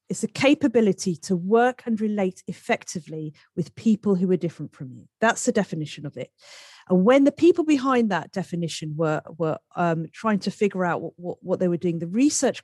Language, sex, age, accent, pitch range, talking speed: English, female, 40-59, British, 165-230 Hz, 200 wpm